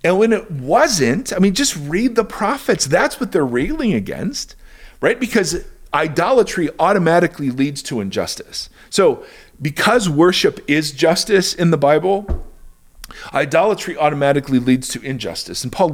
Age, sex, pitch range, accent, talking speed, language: 40-59, male, 115-165 Hz, American, 140 wpm, English